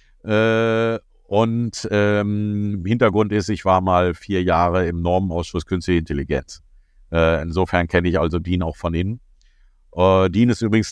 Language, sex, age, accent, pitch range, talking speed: German, male, 50-69, German, 90-110 Hz, 145 wpm